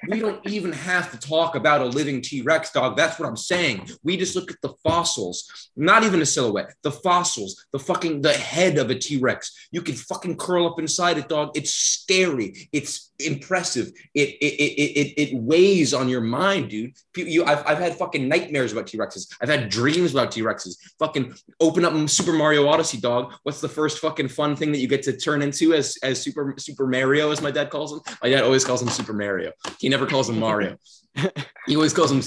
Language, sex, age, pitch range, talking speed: English, male, 20-39, 130-165 Hz, 215 wpm